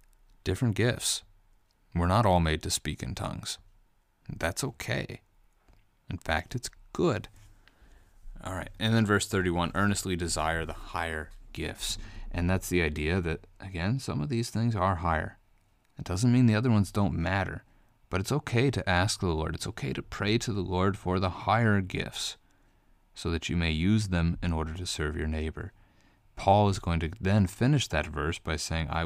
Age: 30-49